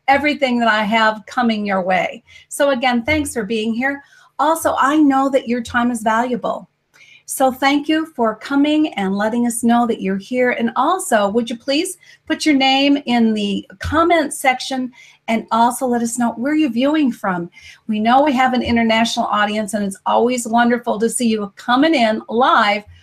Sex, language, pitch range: female, English, 215-275 Hz